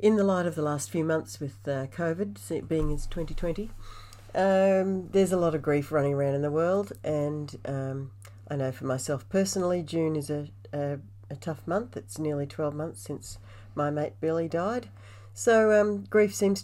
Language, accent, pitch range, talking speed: English, Australian, 105-165 Hz, 190 wpm